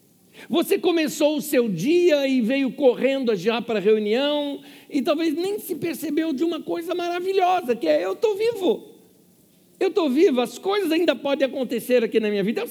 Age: 60-79